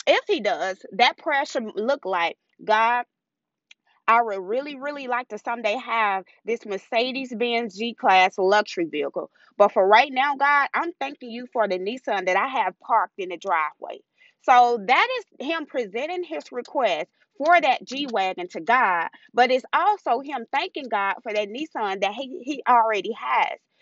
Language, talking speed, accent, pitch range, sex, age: English, 165 wpm, American, 220-300 Hz, female, 20-39